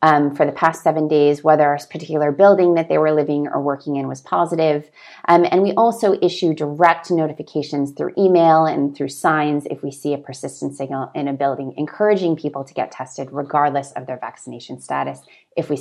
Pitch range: 150-180 Hz